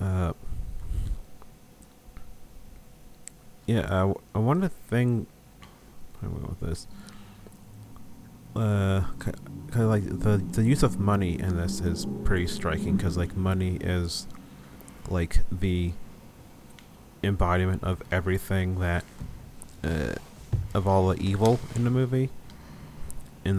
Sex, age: male, 30-49